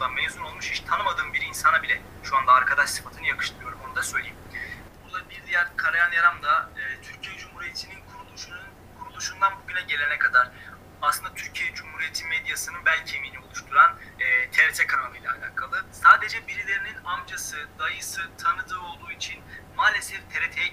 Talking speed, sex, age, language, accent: 145 wpm, male, 30-49, Turkish, native